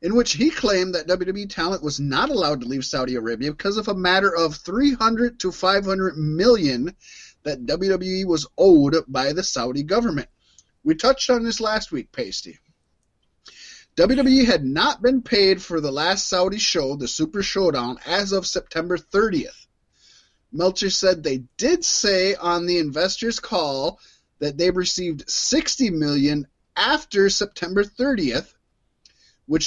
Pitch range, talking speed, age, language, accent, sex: 155-240 Hz, 150 wpm, 30-49, English, American, male